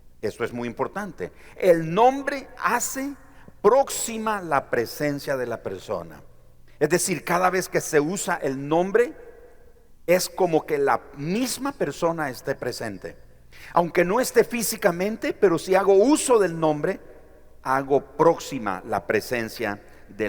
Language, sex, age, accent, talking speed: Spanish, male, 50-69, Mexican, 135 wpm